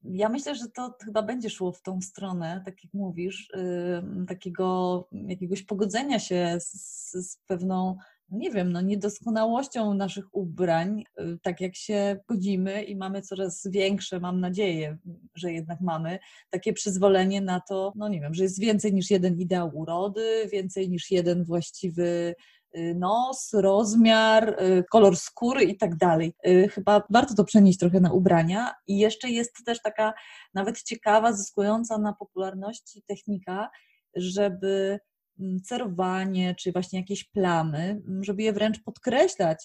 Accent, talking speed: native, 140 wpm